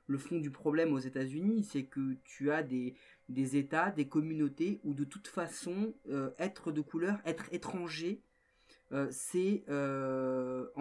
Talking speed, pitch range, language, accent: 160 wpm, 155-200 Hz, French, French